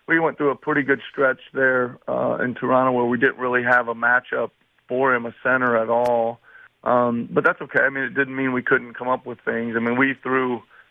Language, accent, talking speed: English, American, 235 wpm